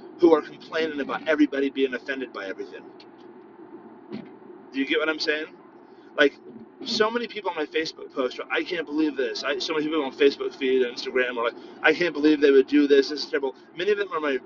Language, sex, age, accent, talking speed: English, male, 30-49, American, 220 wpm